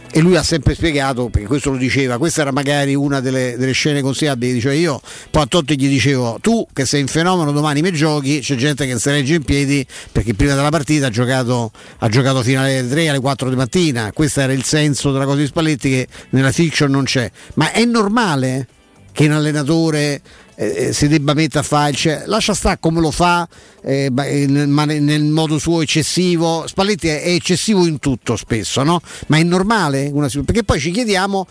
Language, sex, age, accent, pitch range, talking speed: Italian, male, 50-69, native, 130-165 Hz, 205 wpm